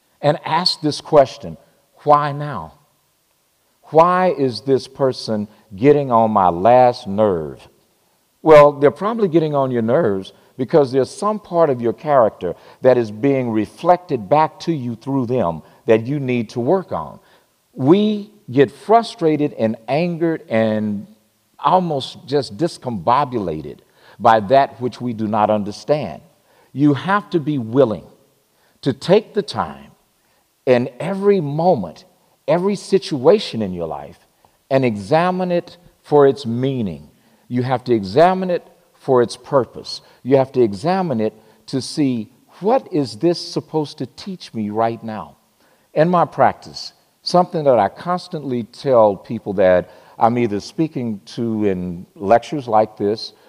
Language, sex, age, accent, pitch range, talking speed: English, male, 50-69, American, 110-165 Hz, 140 wpm